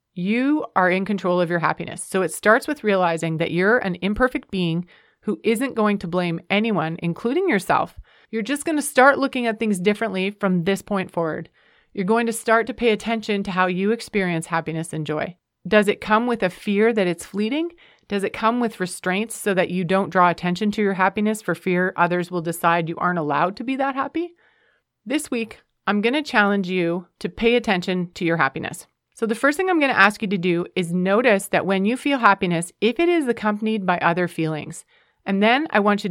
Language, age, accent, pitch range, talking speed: English, 30-49, American, 180-225 Hz, 215 wpm